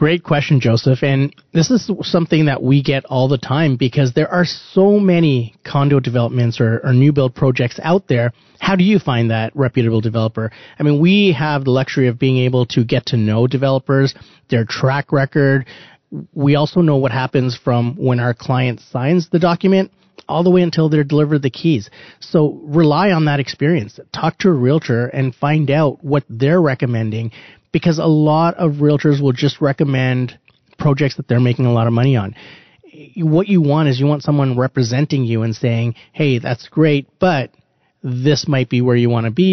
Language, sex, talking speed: English, male, 190 wpm